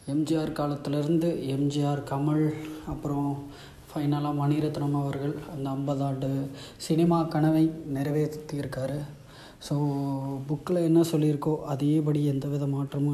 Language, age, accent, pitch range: Tamil, 20-39, native, 140-160 Hz